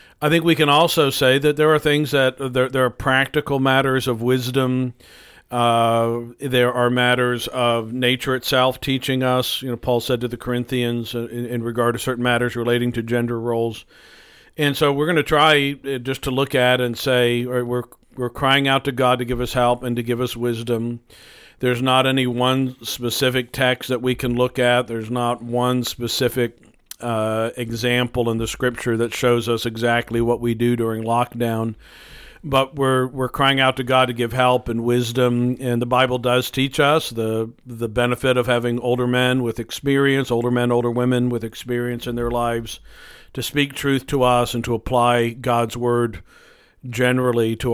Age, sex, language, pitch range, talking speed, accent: 50-69, male, English, 120-130 Hz, 190 wpm, American